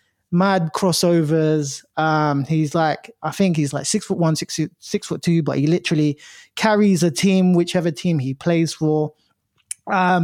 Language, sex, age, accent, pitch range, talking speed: English, male, 20-39, British, 155-185 Hz, 165 wpm